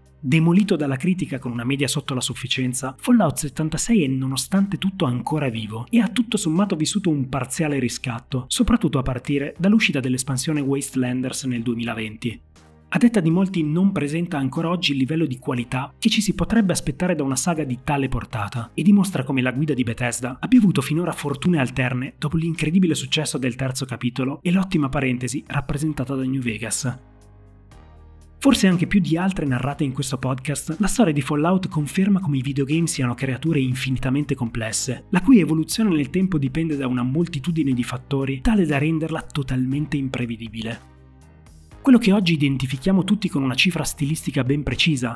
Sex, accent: male, native